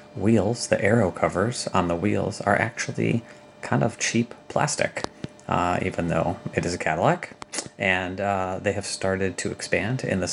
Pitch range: 85-105 Hz